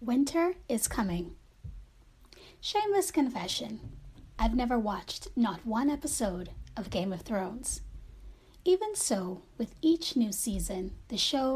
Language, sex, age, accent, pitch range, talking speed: English, female, 30-49, American, 200-290 Hz, 120 wpm